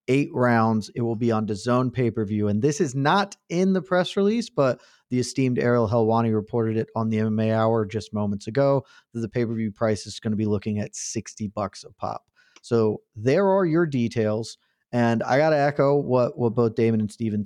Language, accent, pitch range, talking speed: English, American, 115-155 Hz, 205 wpm